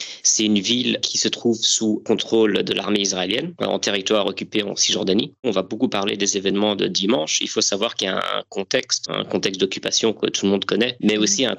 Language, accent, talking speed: French, French, 225 wpm